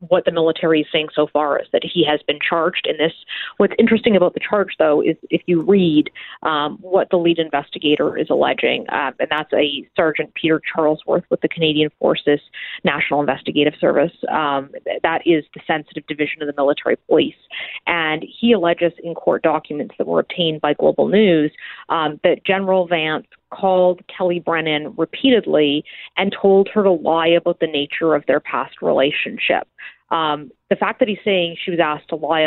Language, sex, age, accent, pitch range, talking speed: English, female, 30-49, American, 150-185 Hz, 180 wpm